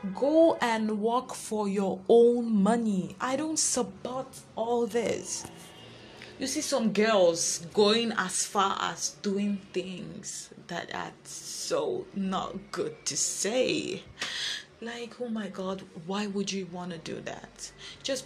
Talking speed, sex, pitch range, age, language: 135 wpm, female, 175-225 Hz, 20-39, English